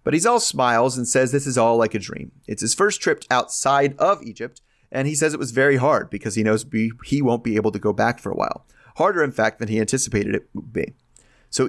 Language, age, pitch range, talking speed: English, 30-49, 110-145 Hz, 250 wpm